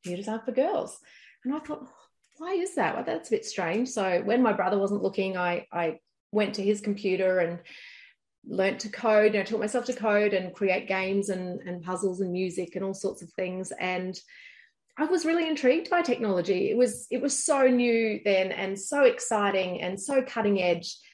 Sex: female